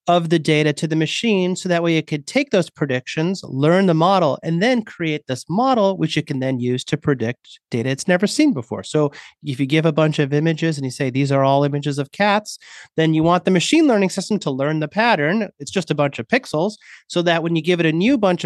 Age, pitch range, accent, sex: 30-49, 145-180 Hz, American, male